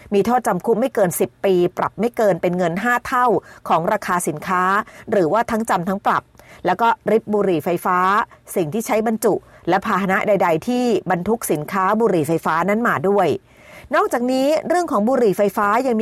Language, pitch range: Thai, 185-240 Hz